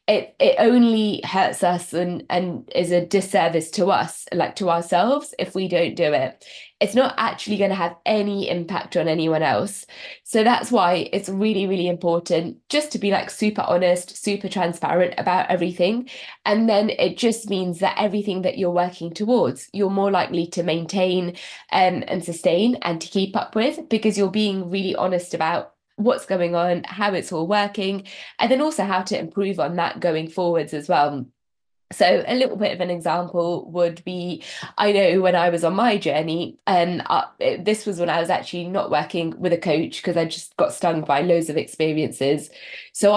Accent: British